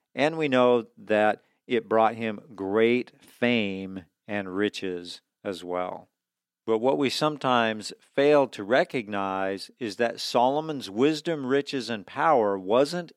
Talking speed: 130 wpm